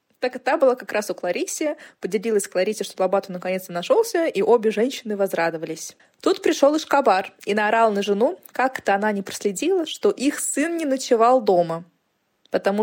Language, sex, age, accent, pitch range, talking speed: Russian, female, 20-39, native, 195-265 Hz, 170 wpm